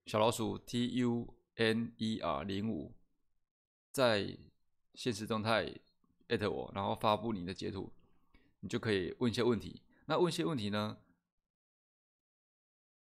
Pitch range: 100-120 Hz